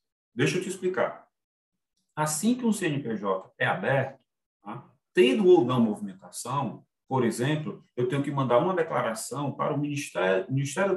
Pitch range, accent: 125-195 Hz, Brazilian